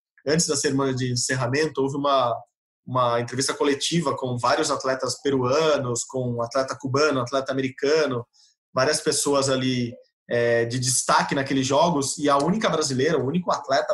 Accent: Brazilian